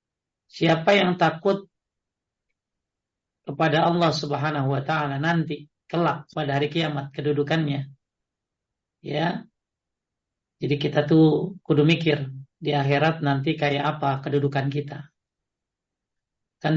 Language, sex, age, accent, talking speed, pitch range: Indonesian, male, 50-69, native, 100 wpm, 140-170 Hz